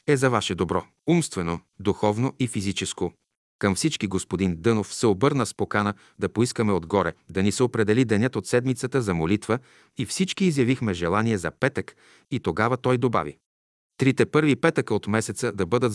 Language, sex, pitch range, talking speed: Bulgarian, male, 95-130 Hz, 170 wpm